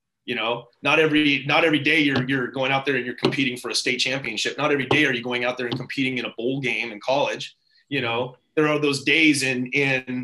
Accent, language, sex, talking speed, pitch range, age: American, English, male, 250 wpm, 120-140 Hz, 30-49